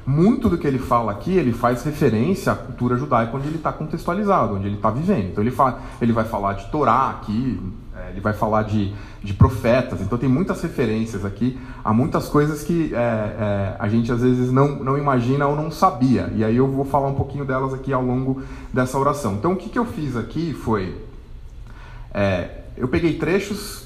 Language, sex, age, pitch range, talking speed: Portuguese, male, 30-49, 115-145 Hz, 205 wpm